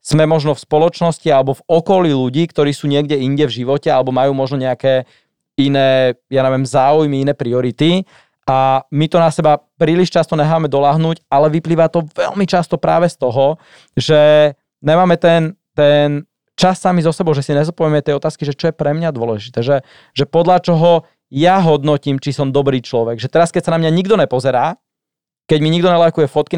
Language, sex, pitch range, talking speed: Slovak, male, 135-165 Hz, 185 wpm